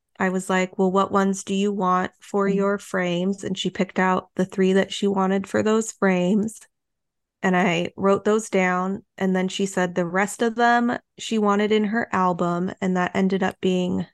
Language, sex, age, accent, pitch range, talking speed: English, female, 20-39, American, 180-195 Hz, 200 wpm